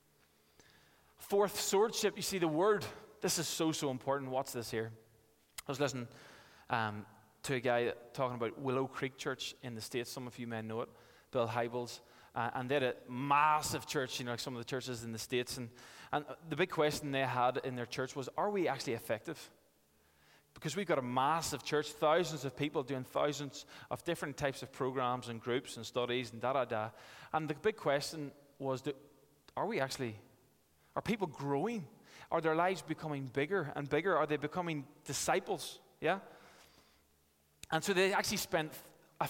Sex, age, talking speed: male, 20-39, 185 wpm